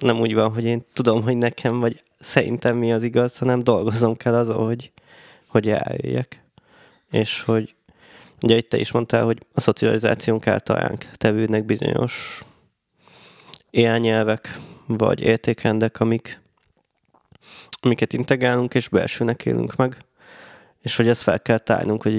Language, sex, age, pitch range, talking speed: Hungarian, male, 20-39, 110-125 Hz, 140 wpm